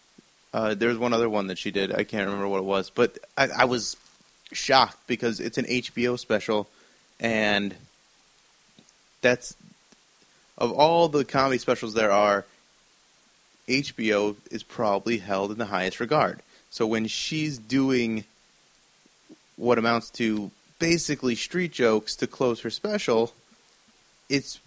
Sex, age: male, 30-49